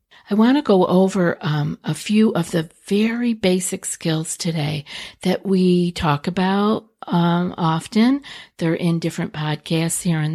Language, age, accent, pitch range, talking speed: English, 50-69, American, 170-210 Hz, 150 wpm